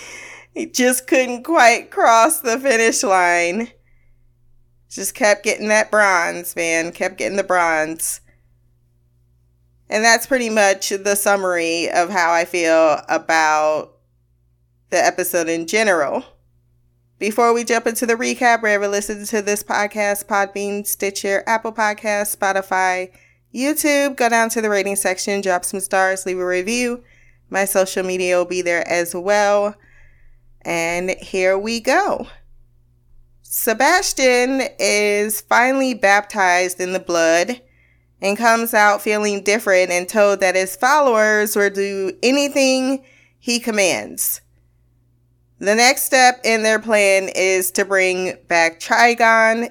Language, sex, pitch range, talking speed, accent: English, female, 170-230 Hz, 130 wpm, American